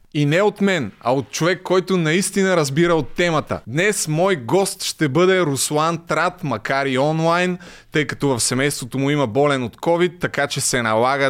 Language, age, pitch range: Bulgarian, 20-39, 140-195 Hz